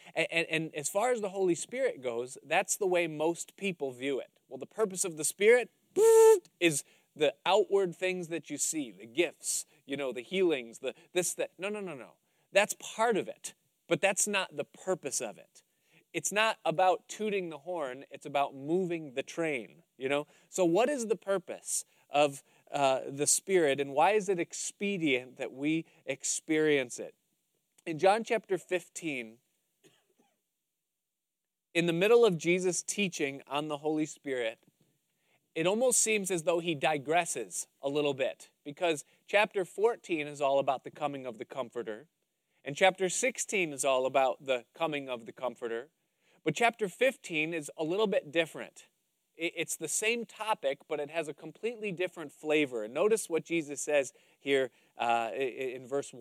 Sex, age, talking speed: male, 30-49, 170 wpm